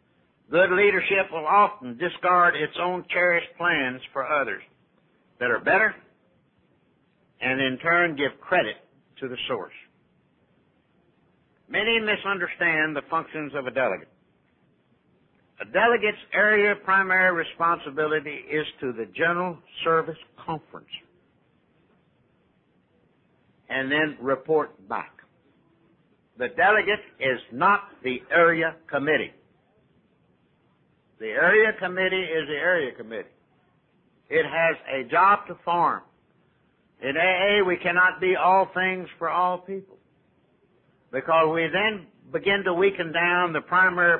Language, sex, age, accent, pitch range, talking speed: English, male, 60-79, American, 155-190 Hz, 115 wpm